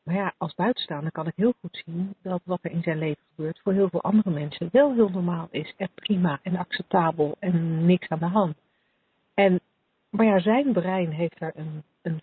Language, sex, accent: Dutch, female, Dutch